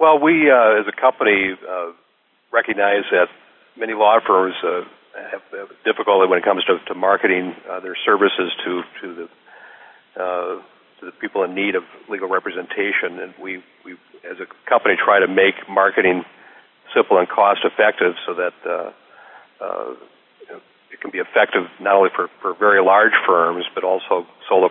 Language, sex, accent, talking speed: English, male, American, 160 wpm